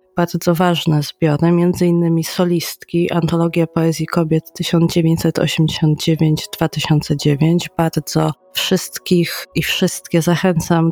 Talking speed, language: 80 wpm, Polish